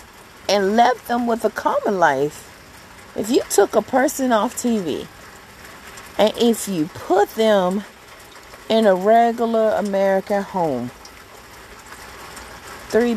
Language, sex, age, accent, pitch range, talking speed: English, female, 40-59, American, 170-230 Hz, 115 wpm